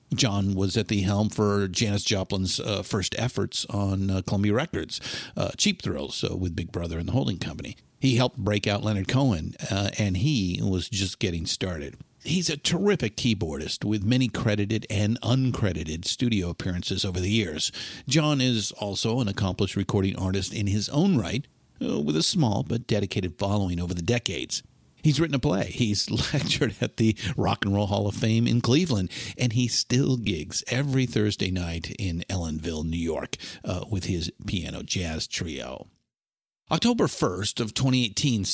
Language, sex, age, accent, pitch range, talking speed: English, male, 50-69, American, 95-125 Hz, 170 wpm